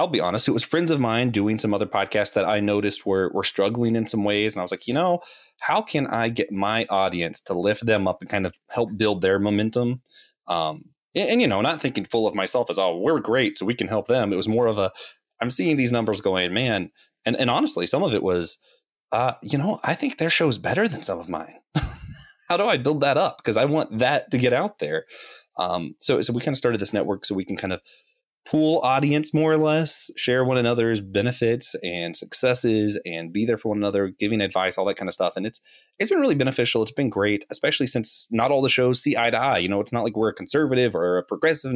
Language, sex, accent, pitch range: English, male, American, 105-140 Hz